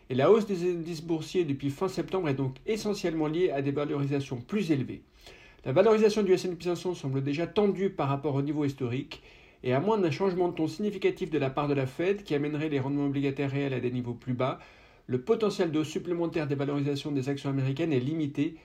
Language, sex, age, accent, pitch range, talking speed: French, male, 60-79, French, 140-180 Hz, 215 wpm